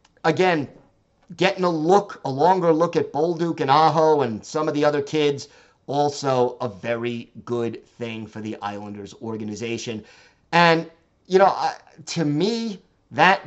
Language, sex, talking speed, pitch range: English, male, 145 wpm, 125-165 Hz